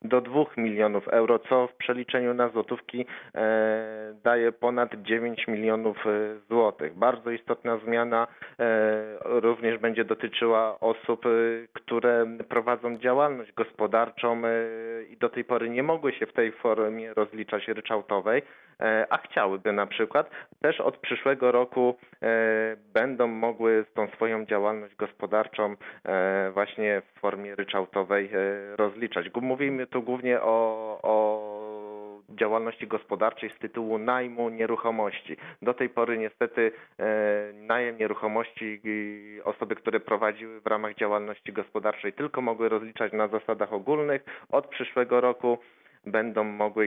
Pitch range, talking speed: 105-120 Hz, 130 wpm